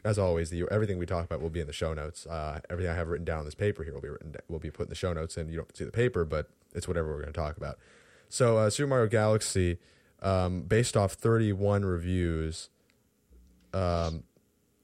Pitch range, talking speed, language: 85-105 Hz, 235 wpm, English